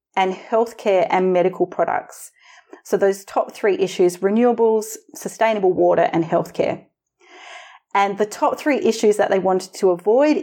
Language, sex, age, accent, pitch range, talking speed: English, female, 30-49, Australian, 185-275 Hz, 145 wpm